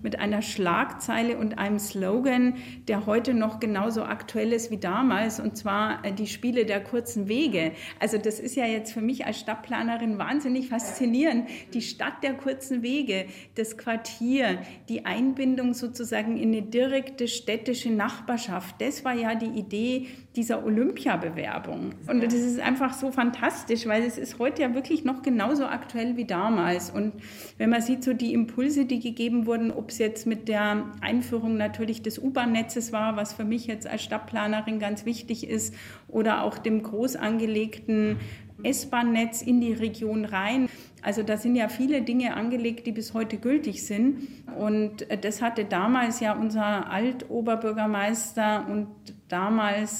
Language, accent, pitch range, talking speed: German, German, 215-245 Hz, 155 wpm